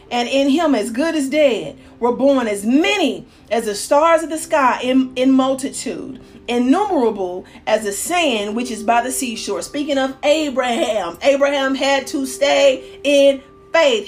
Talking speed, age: 160 wpm, 40-59